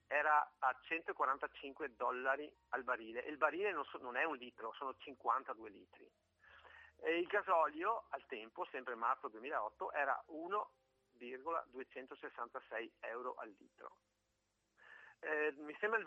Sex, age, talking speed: male, 40-59, 130 wpm